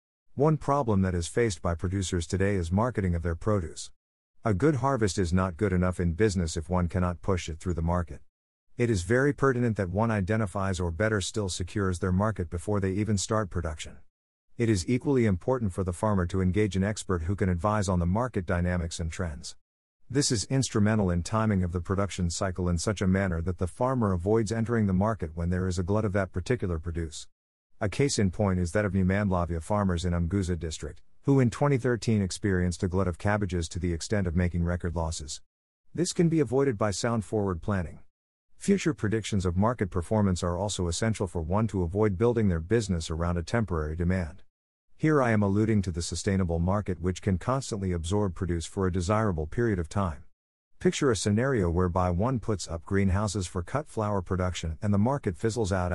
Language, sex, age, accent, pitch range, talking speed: English, male, 50-69, American, 90-110 Hz, 200 wpm